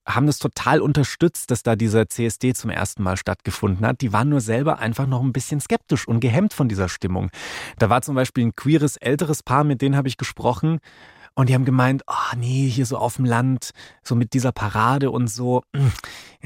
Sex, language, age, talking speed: male, German, 30-49, 210 wpm